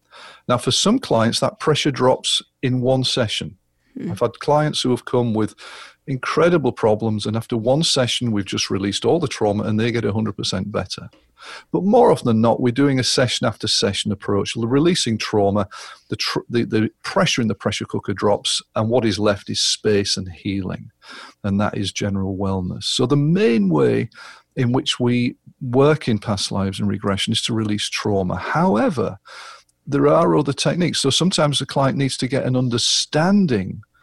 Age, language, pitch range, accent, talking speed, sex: 40-59, English, 105-140 Hz, British, 180 wpm, male